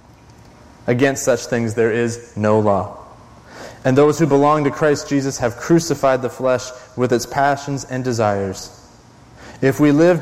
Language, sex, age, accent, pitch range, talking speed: English, male, 30-49, American, 115-135 Hz, 155 wpm